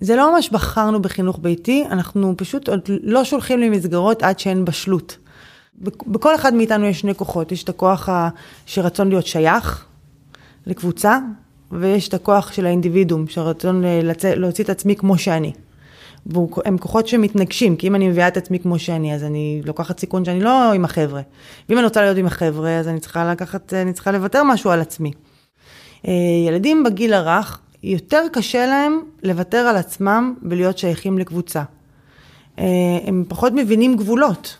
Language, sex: Hebrew, female